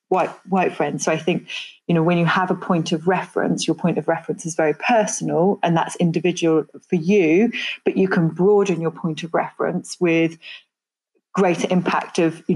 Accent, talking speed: British, 190 wpm